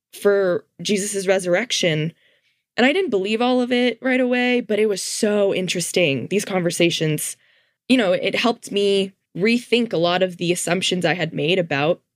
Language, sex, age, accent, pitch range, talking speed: English, female, 10-29, American, 170-210 Hz, 170 wpm